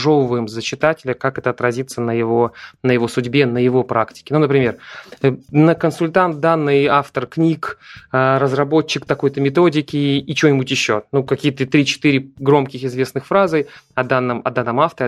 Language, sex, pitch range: Russian, male, 125-150 Hz